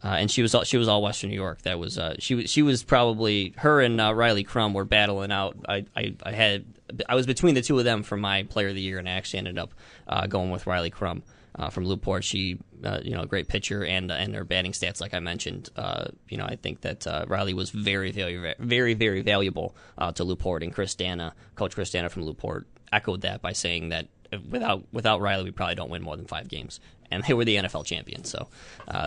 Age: 20-39